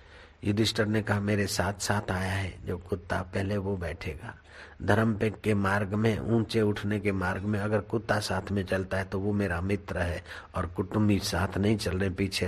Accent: native